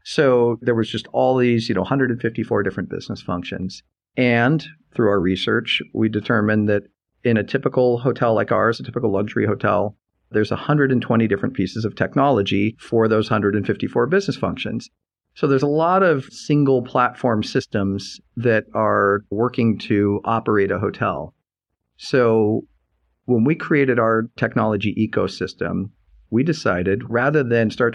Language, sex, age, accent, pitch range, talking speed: English, male, 50-69, American, 100-120 Hz, 145 wpm